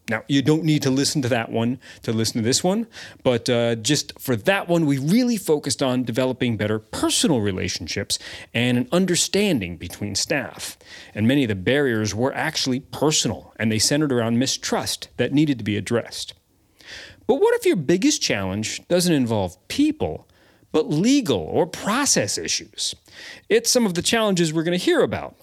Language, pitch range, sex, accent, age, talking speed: English, 110-175 Hz, male, American, 40-59, 175 wpm